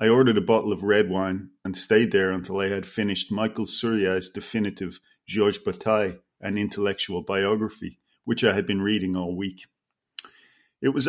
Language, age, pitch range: English, 40-59, 95-110 Hz